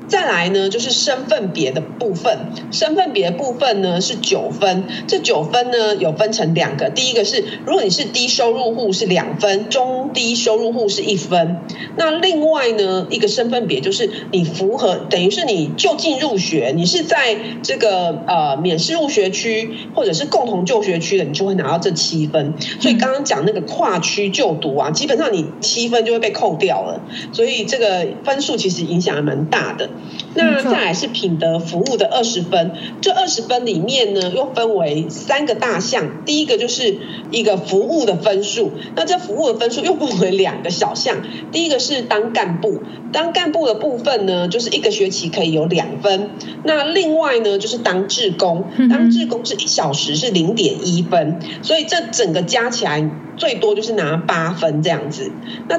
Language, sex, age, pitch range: Chinese, female, 40-59, 185-275 Hz